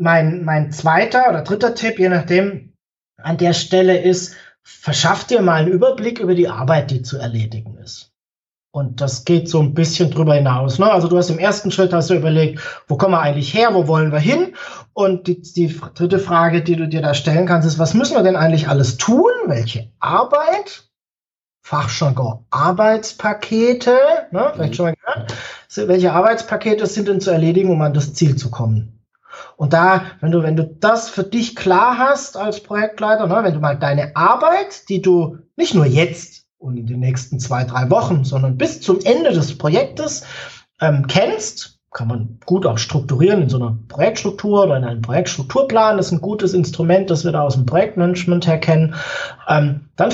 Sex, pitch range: male, 145-200 Hz